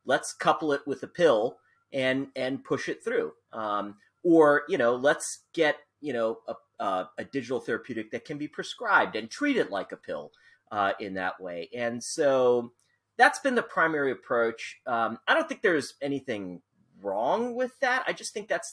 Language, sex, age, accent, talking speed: English, male, 40-59, American, 185 wpm